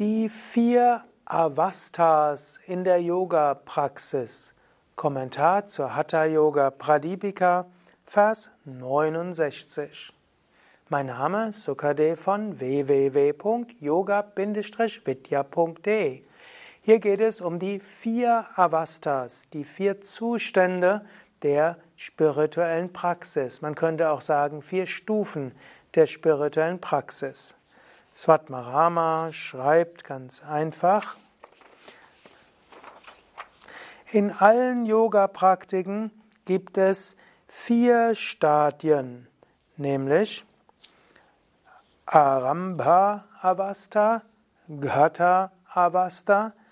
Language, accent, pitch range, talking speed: German, German, 150-205 Hz, 70 wpm